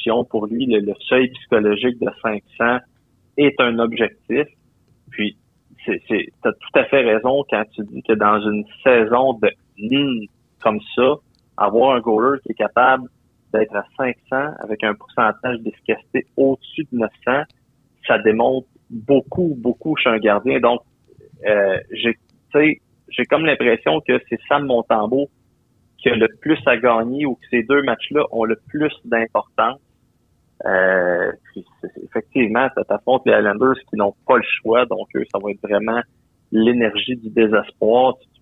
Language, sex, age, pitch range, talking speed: French, male, 30-49, 110-135 Hz, 150 wpm